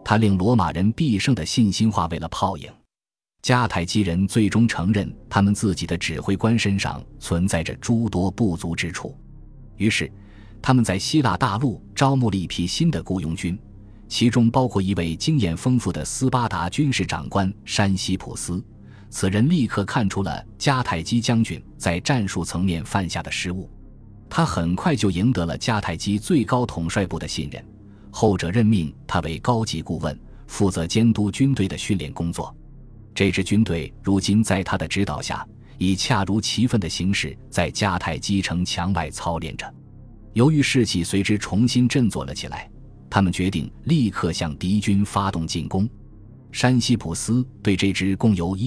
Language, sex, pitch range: Chinese, male, 90-115 Hz